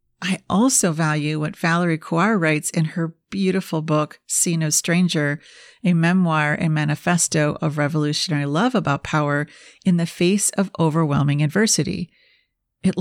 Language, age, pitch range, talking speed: English, 50-69, 155-190 Hz, 140 wpm